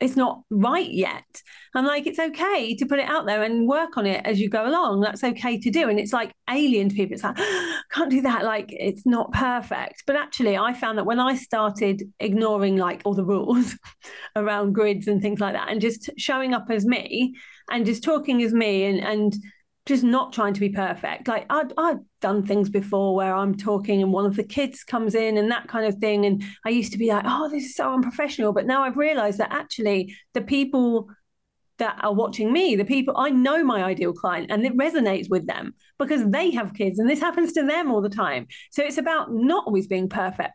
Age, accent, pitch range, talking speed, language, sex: 40-59, British, 205-275 Hz, 230 wpm, English, female